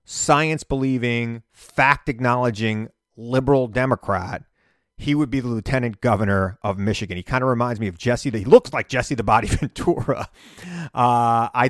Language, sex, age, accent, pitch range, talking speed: English, male, 30-49, American, 100-135 Hz, 150 wpm